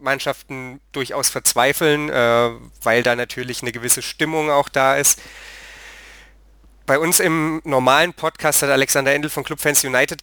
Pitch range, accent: 125-150 Hz, German